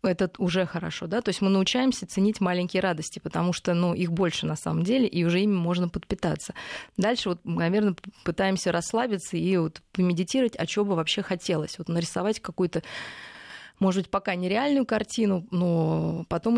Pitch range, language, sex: 170-205 Hz, Russian, female